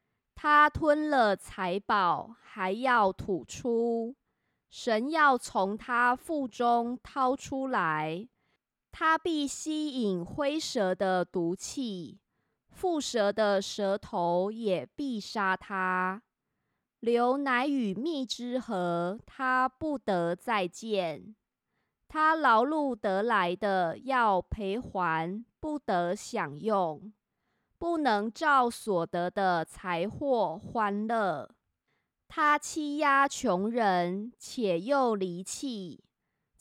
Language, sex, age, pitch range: Chinese, female, 20-39, 190-270 Hz